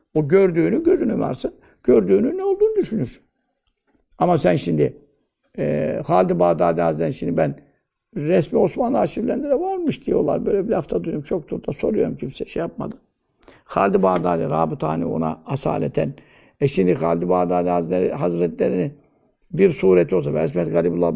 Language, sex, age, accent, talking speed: Turkish, male, 60-79, native, 130 wpm